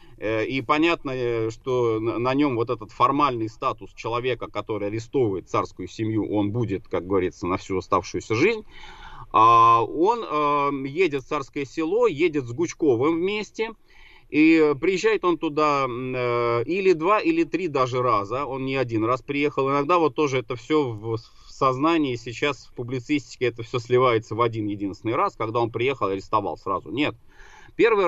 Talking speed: 150 wpm